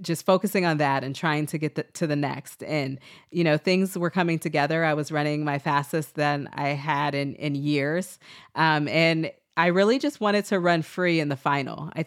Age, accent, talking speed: 30-49, American, 210 wpm